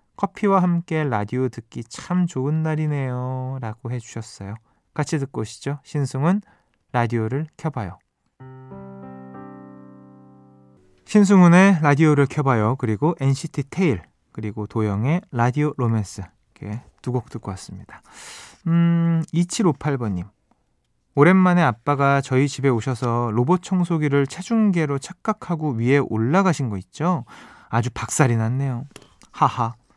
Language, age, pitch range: Korean, 20-39, 115-165 Hz